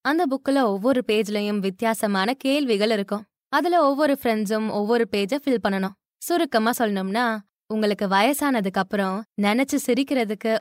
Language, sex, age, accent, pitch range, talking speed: Tamil, female, 20-39, native, 205-275 Hz, 120 wpm